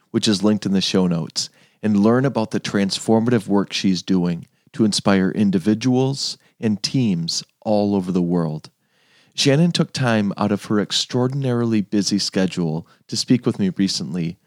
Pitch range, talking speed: 95-115 Hz, 160 wpm